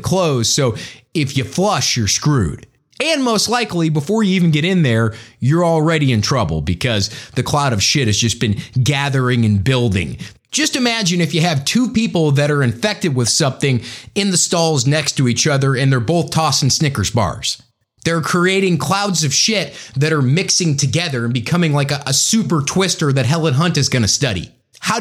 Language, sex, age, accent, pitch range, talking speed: English, male, 30-49, American, 125-180 Hz, 190 wpm